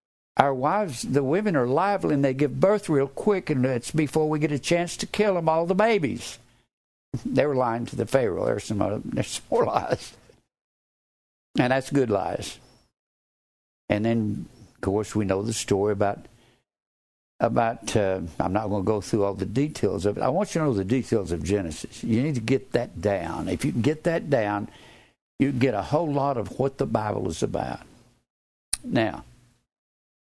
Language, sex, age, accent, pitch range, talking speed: English, male, 60-79, American, 110-150 Hz, 195 wpm